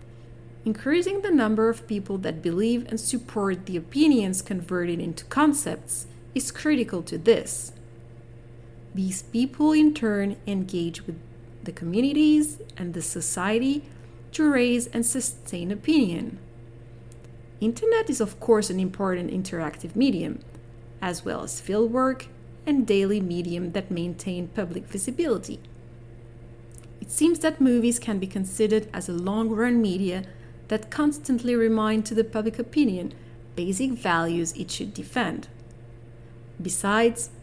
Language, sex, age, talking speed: French, female, 30-49, 125 wpm